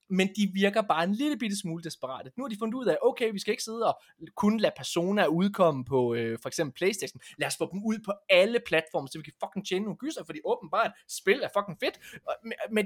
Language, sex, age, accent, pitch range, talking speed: Danish, male, 20-39, native, 160-225 Hz, 245 wpm